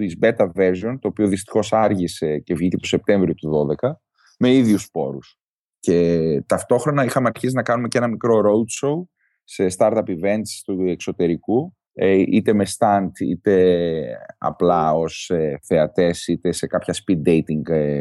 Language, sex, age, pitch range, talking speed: Greek, male, 30-49, 95-130 Hz, 145 wpm